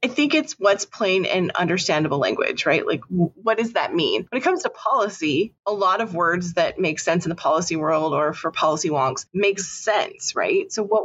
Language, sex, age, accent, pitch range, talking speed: English, female, 30-49, American, 180-230 Hz, 210 wpm